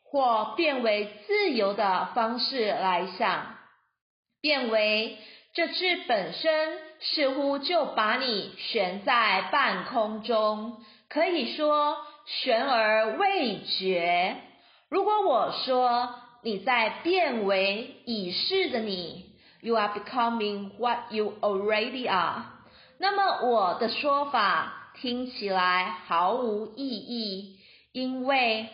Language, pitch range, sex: Chinese, 195-265 Hz, female